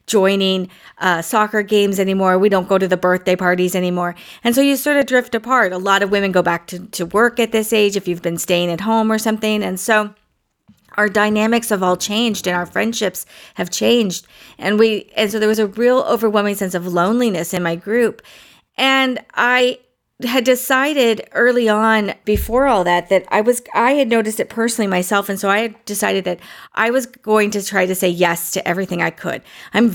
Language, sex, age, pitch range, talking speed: English, female, 40-59, 180-225 Hz, 210 wpm